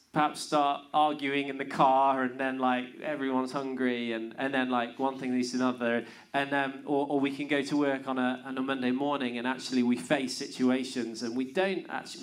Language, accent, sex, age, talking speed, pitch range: English, British, male, 30-49, 215 wpm, 120-145 Hz